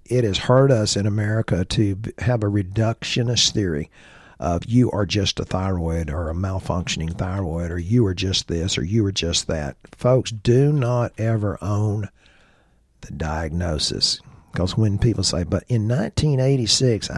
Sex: male